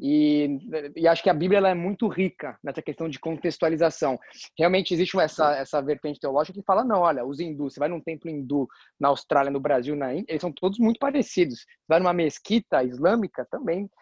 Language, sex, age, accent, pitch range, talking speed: Portuguese, male, 20-39, Brazilian, 165-205 Hz, 195 wpm